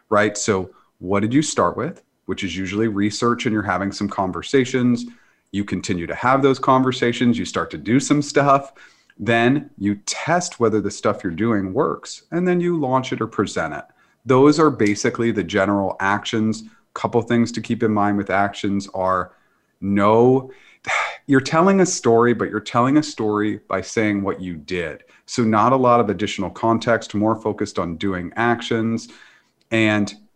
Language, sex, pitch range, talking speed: English, male, 100-130 Hz, 175 wpm